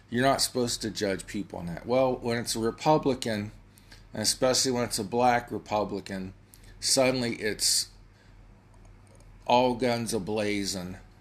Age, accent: 50-69, American